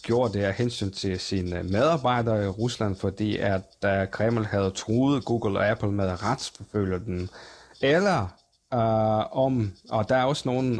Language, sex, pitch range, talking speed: Danish, male, 100-130 Hz, 155 wpm